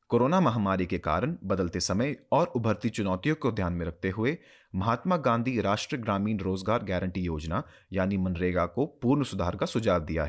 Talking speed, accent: 170 wpm, native